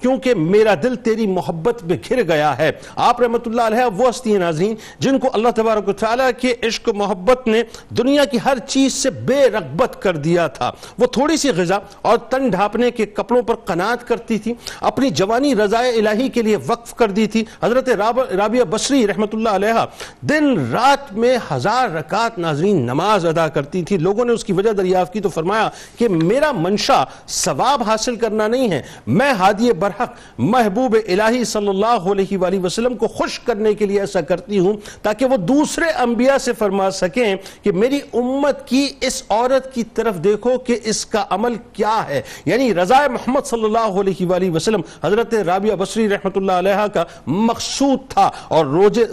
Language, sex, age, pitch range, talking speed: Urdu, male, 50-69, 195-245 Hz, 180 wpm